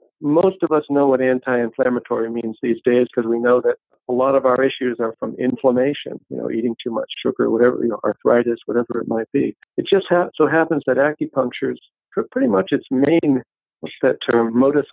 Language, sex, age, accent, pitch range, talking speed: English, male, 50-69, American, 120-150 Hz, 205 wpm